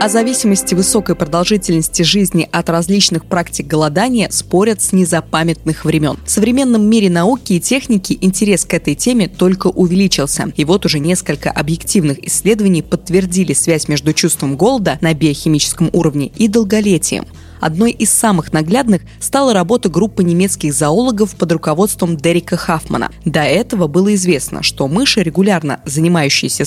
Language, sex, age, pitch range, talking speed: Russian, female, 20-39, 160-210 Hz, 140 wpm